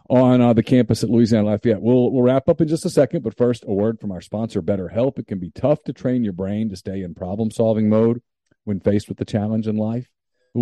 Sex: male